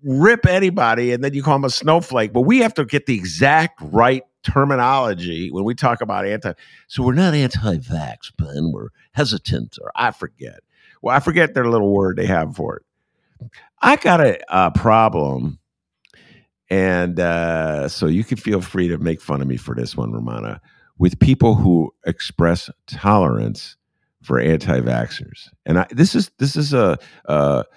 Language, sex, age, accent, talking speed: English, male, 50-69, American, 170 wpm